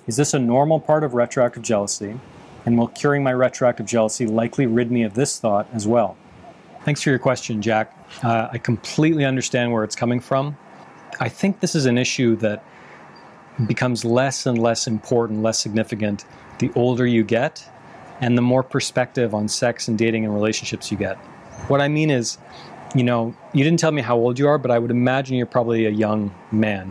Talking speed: 195 wpm